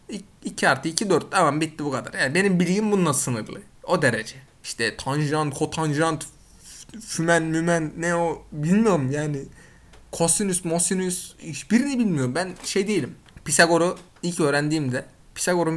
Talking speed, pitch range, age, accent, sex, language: 130 wpm, 140-180 Hz, 20-39, native, male, Turkish